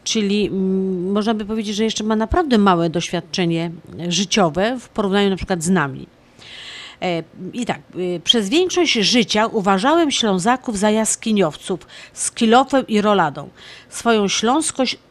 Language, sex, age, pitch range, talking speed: Polish, female, 50-69, 190-240 Hz, 125 wpm